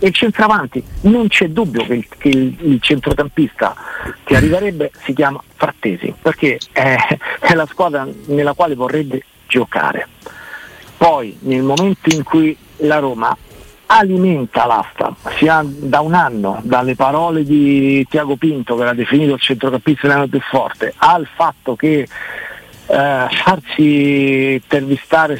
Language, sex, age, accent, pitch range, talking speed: Italian, male, 50-69, native, 135-160 Hz, 135 wpm